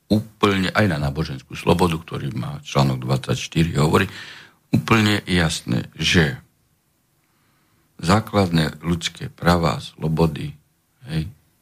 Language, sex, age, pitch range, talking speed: Slovak, male, 60-79, 85-125 Hz, 95 wpm